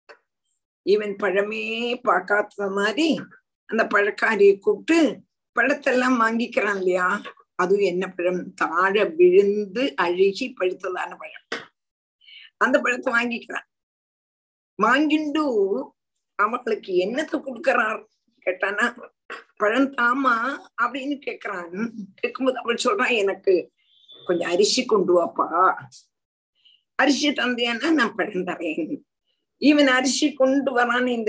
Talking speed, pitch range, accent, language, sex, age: 90 wpm, 200-280 Hz, native, Tamil, female, 50-69